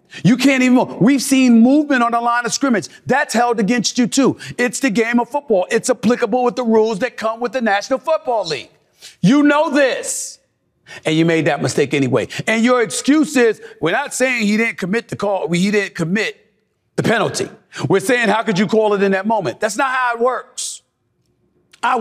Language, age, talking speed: English, 40-59, 205 wpm